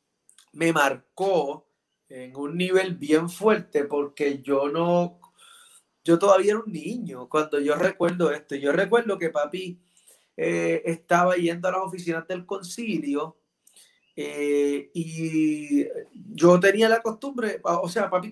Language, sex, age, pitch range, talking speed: Spanish, male, 30-49, 155-195 Hz, 130 wpm